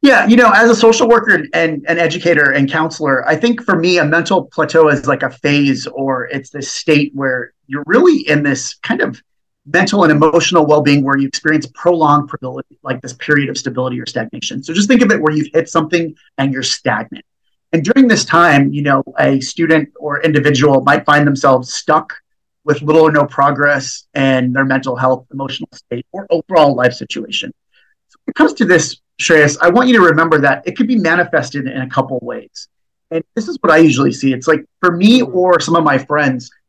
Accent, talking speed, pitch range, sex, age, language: American, 205 wpm, 135-170 Hz, male, 30-49, English